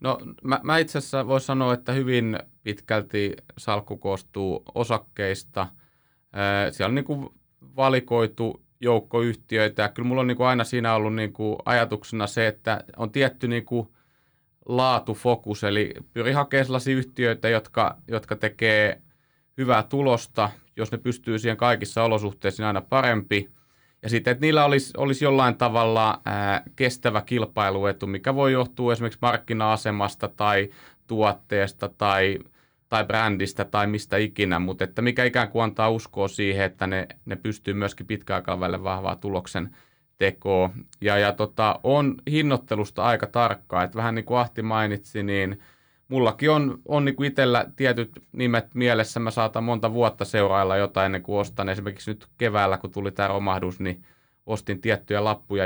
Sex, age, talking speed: male, 30-49, 150 wpm